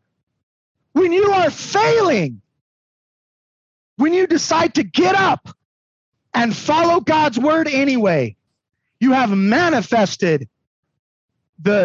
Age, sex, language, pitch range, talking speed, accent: 30-49, male, English, 170-235 Hz, 95 wpm, American